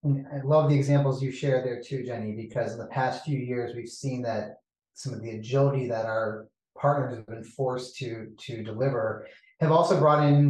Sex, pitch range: male, 120-140 Hz